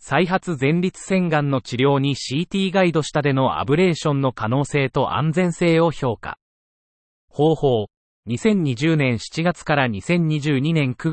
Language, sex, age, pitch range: Japanese, male, 30-49, 125-165 Hz